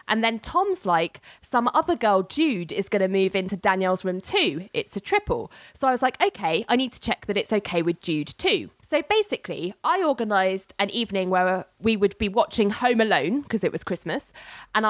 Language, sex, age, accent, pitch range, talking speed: English, female, 20-39, British, 190-290 Hz, 210 wpm